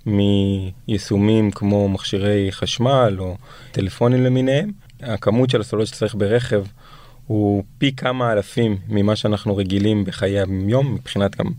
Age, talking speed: 20-39, 115 wpm